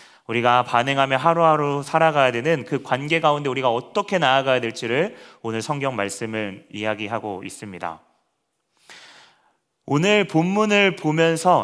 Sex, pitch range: male, 110-150 Hz